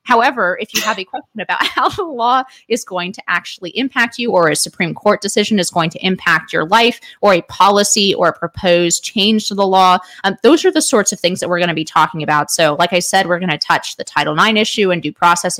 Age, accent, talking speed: 30-49, American, 255 wpm